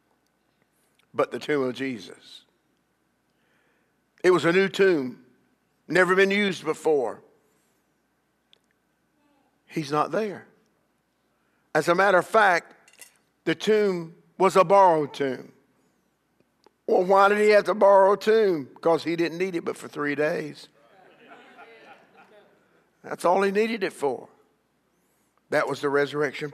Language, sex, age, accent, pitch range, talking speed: English, male, 50-69, American, 145-185 Hz, 125 wpm